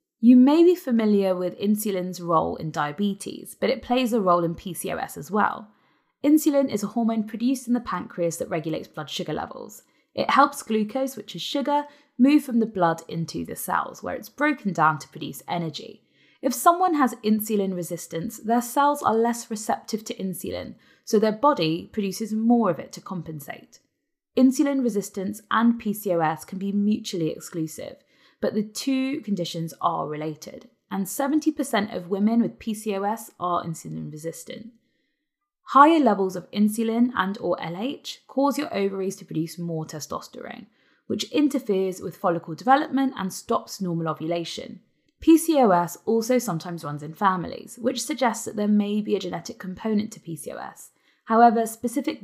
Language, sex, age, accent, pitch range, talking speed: English, female, 20-39, British, 180-255 Hz, 155 wpm